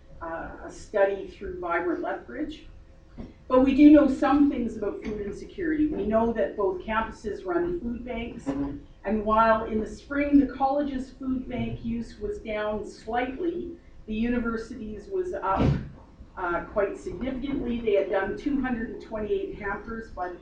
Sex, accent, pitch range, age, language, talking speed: female, American, 200-280 Hz, 40-59, English, 145 wpm